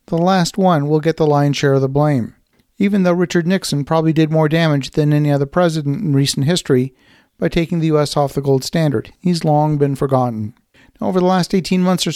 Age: 50-69